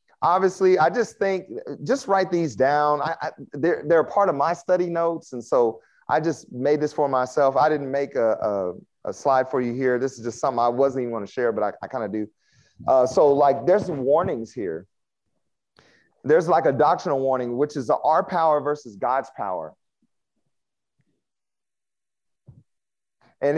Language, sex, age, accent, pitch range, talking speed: English, male, 30-49, American, 135-185 Hz, 185 wpm